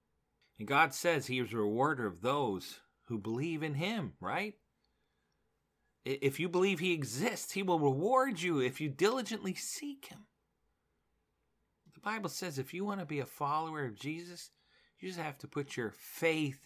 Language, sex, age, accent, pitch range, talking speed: English, male, 40-59, American, 120-170 Hz, 165 wpm